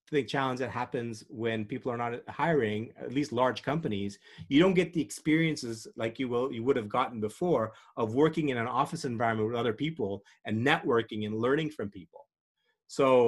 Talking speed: 190 wpm